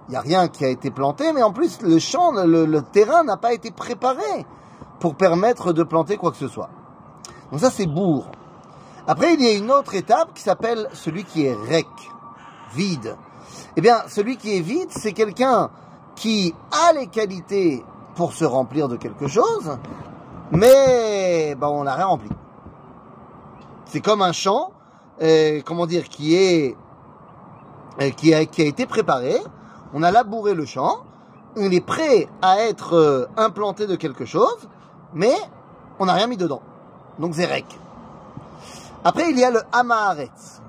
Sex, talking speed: male, 170 wpm